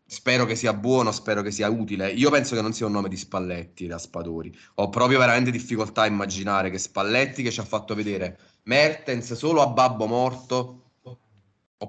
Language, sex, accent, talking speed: Italian, male, native, 190 wpm